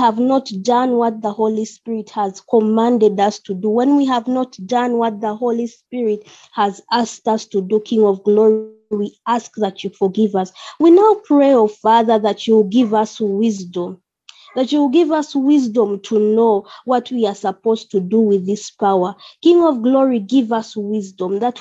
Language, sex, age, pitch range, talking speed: English, female, 20-39, 210-265 Hz, 190 wpm